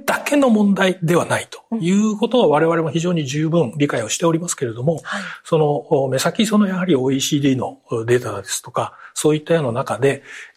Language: Japanese